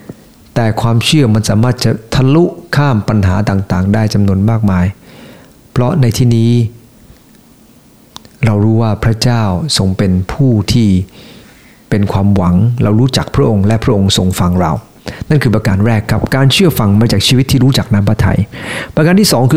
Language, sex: English, male